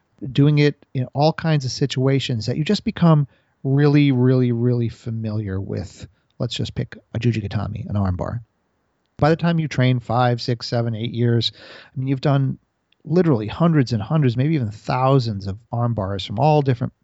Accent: American